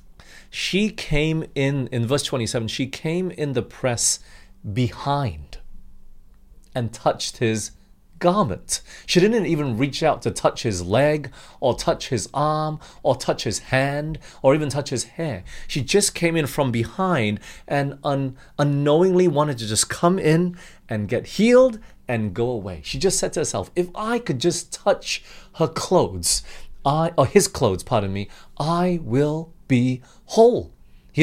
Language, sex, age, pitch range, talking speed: English, male, 30-49, 105-155 Hz, 155 wpm